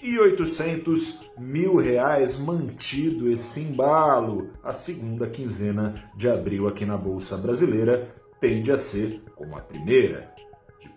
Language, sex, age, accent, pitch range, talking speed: Portuguese, male, 40-59, Brazilian, 110-145 Hz, 125 wpm